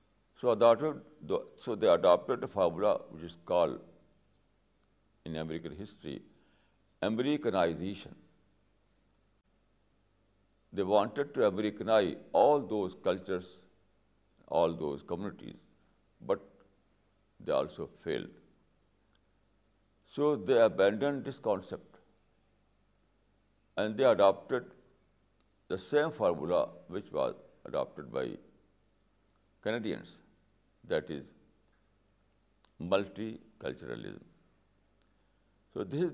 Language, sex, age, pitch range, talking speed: Urdu, male, 60-79, 95-110 Hz, 85 wpm